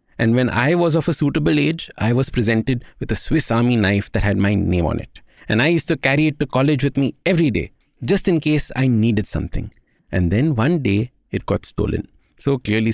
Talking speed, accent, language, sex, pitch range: 225 wpm, Indian, English, male, 110-155 Hz